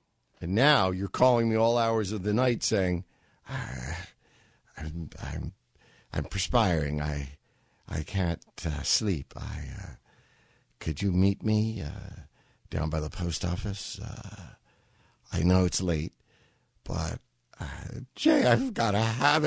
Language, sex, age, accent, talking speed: English, male, 60-79, American, 135 wpm